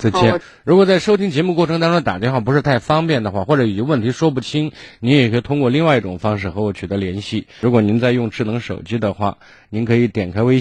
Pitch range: 95-125 Hz